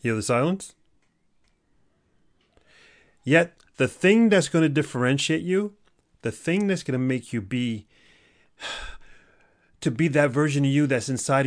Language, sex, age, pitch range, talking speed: English, male, 30-49, 115-165 Hz, 145 wpm